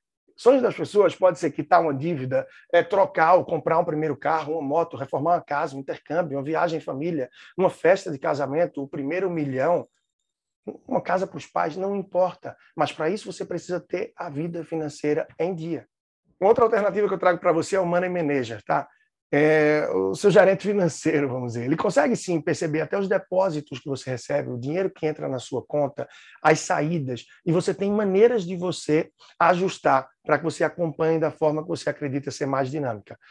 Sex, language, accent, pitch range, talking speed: male, Portuguese, Brazilian, 145-185 Hz, 195 wpm